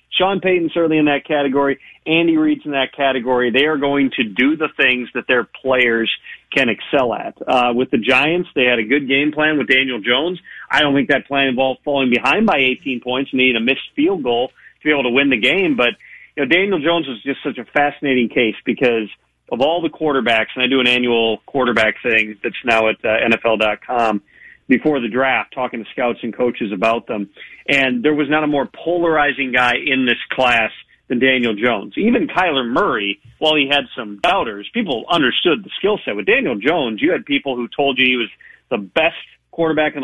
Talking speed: 210 wpm